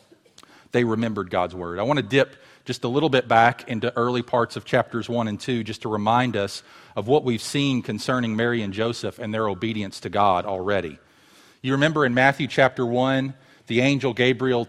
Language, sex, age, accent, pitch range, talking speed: English, male, 40-59, American, 120-150 Hz, 195 wpm